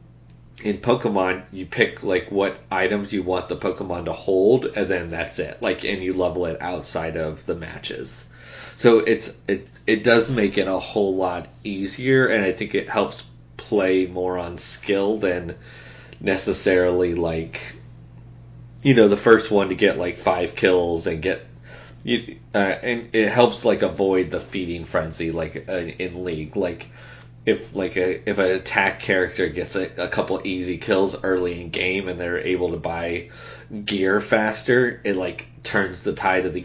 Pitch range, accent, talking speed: 90-110 Hz, American, 175 wpm